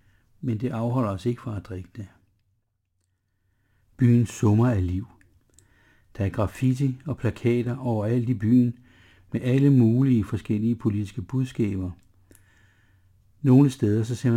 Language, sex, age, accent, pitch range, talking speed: Danish, male, 60-79, native, 100-125 Hz, 130 wpm